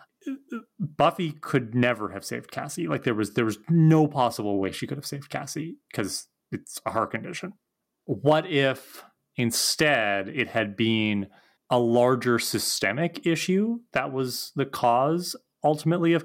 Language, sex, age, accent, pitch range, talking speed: English, male, 30-49, American, 100-125 Hz, 150 wpm